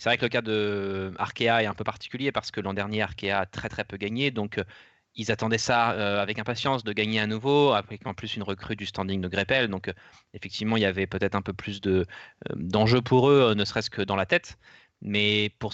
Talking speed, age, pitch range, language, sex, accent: 230 wpm, 20-39, 100-115 Hz, French, male, French